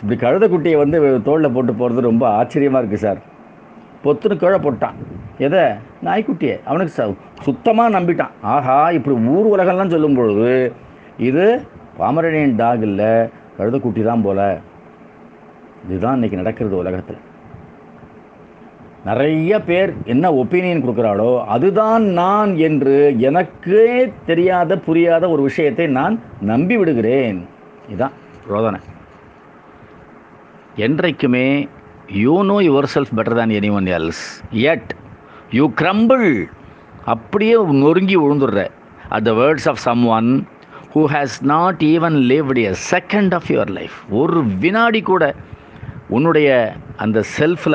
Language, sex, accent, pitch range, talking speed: Tamil, male, native, 110-175 Hz, 105 wpm